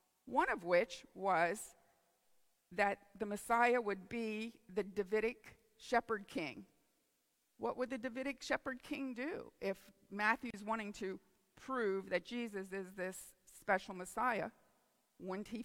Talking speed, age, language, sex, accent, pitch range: 125 wpm, 50-69, English, female, American, 195-240 Hz